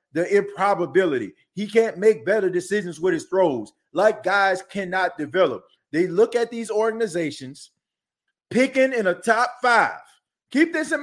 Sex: male